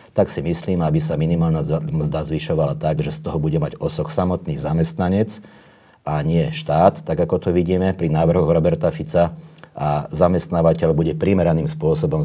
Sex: male